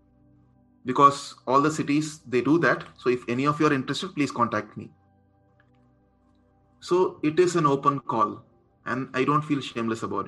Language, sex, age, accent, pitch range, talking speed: Hindi, male, 20-39, native, 115-145 Hz, 170 wpm